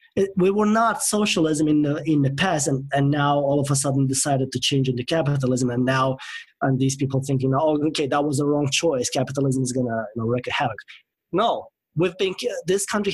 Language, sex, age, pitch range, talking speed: English, male, 30-49, 135-170 Hz, 220 wpm